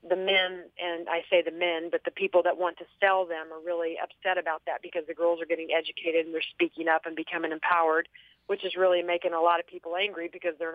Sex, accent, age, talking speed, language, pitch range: female, American, 40-59, 245 wpm, English, 170-190 Hz